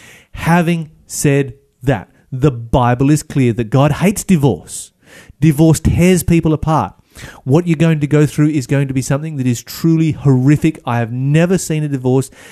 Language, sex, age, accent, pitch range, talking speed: English, male, 30-49, Australian, 120-155 Hz, 175 wpm